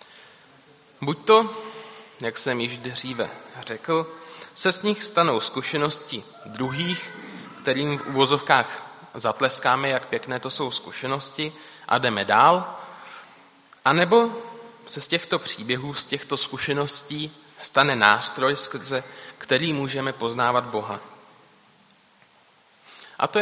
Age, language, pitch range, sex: 20-39, Czech, 125-165 Hz, male